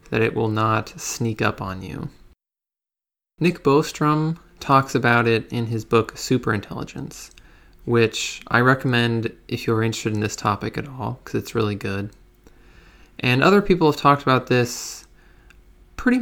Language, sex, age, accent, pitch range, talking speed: English, male, 20-39, American, 110-145 Hz, 150 wpm